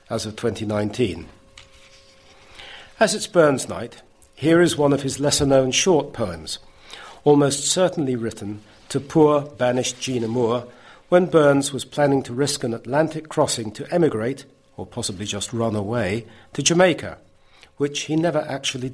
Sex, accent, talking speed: male, British, 145 wpm